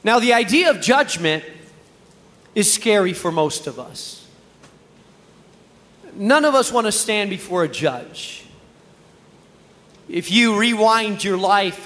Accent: American